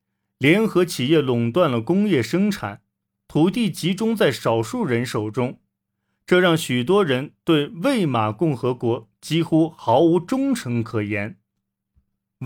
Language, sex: Chinese, male